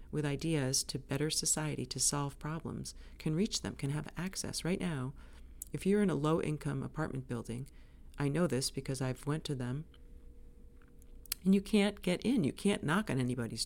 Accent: American